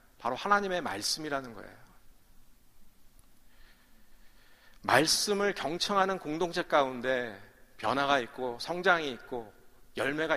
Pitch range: 125-180 Hz